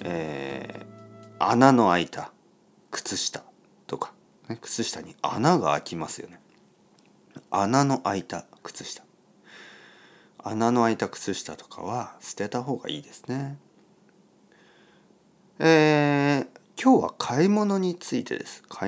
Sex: male